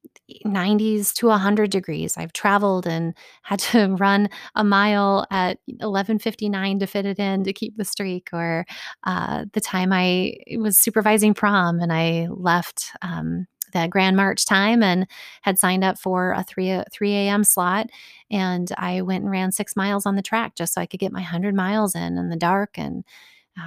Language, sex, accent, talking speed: English, female, American, 185 wpm